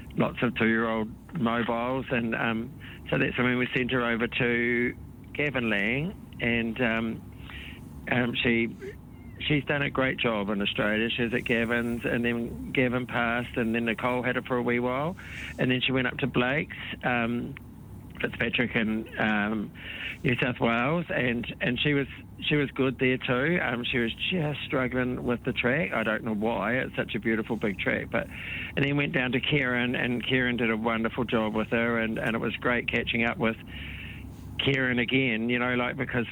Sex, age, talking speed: male, 50-69, 185 wpm